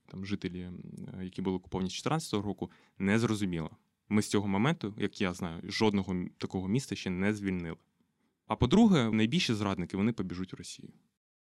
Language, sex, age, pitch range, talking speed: Ukrainian, male, 20-39, 90-110 Hz, 155 wpm